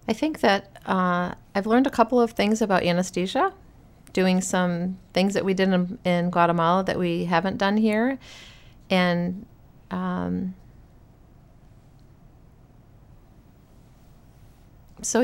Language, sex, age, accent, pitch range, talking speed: English, female, 40-59, American, 155-195 Hz, 115 wpm